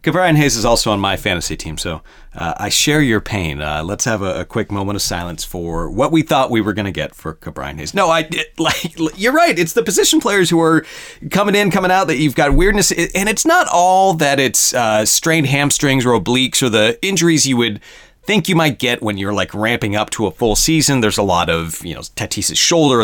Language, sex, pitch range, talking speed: English, male, 105-160 Hz, 240 wpm